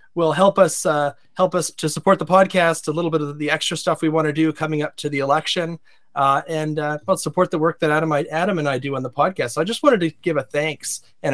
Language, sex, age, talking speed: English, male, 30-49, 270 wpm